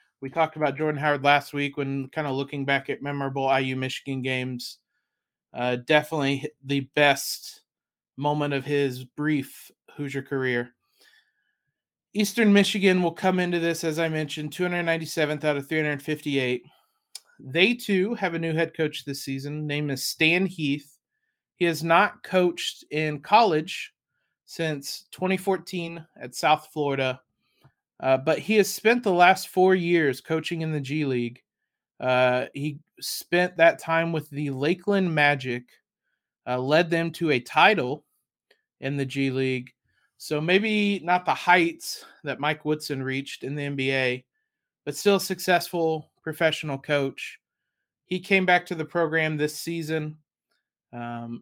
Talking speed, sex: 145 wpm, male